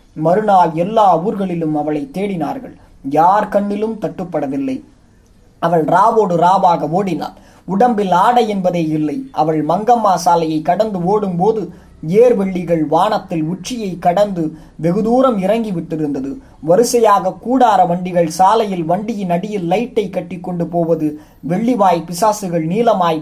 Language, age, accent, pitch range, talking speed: Tamil, 20-39, native, 170-220 Hz, 110 wpm